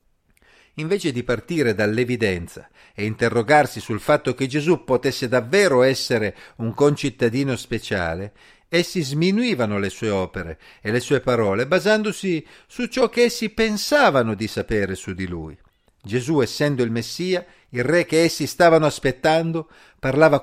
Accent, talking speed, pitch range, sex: native, 140 wpm, 115-155 Hz, male